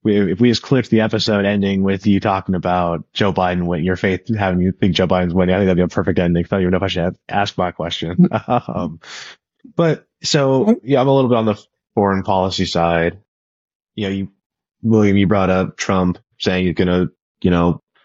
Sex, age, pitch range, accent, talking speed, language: male, 20-39, 90-110 Hz, American, 220 wpm, English